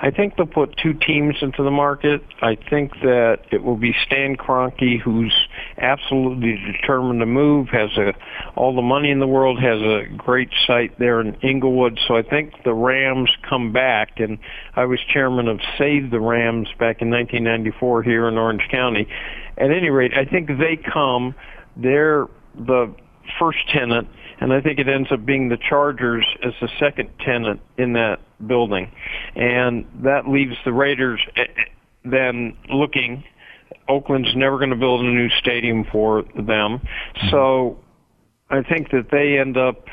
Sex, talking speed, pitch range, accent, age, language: male, 165 wpm, 115-135 Hz, American, 50-69, English